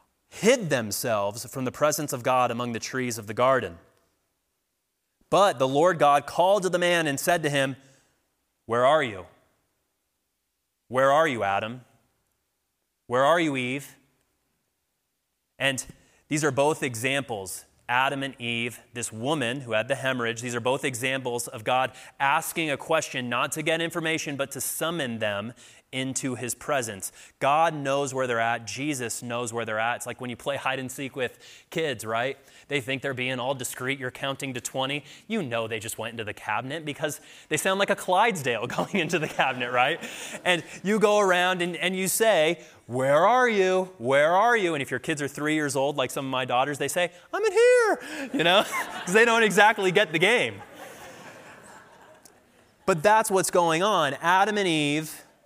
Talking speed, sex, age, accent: 185 wpm, male, 30-49, American